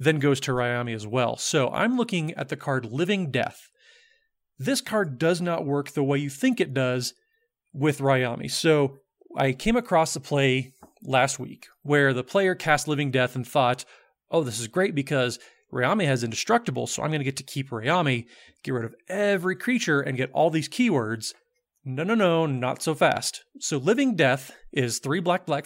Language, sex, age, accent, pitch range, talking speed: English, male, 30-49, American, 135-185 Hz, 190 wpm